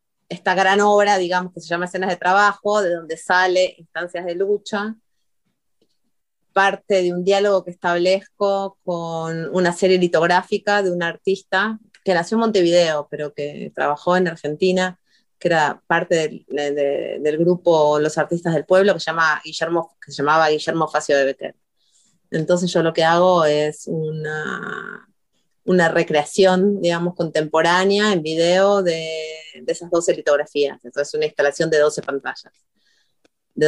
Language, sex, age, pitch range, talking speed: Spanish, female, 30-49, 155-195 Hz, 150 wpm